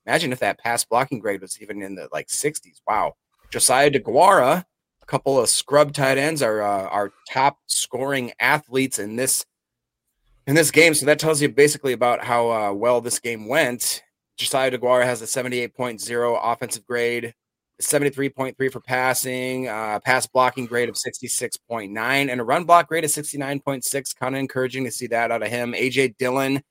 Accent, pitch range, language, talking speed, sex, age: American, 115-135 Hz, English, 175 wpm, male, 30-49